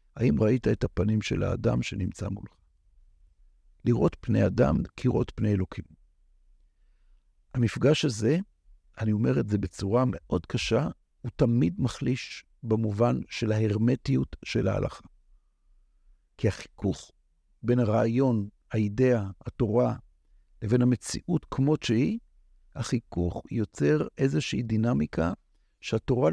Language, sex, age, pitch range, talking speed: Hebrew, male, 60-79, 90-125 Hz, 105 wpm